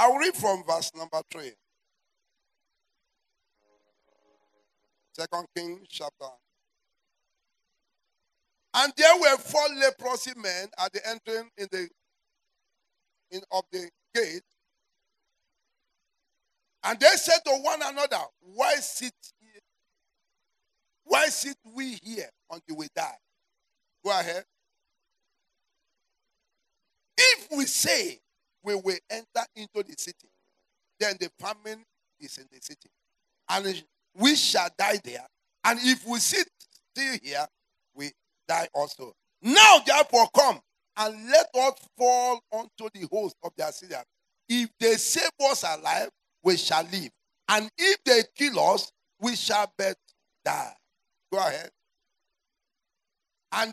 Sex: male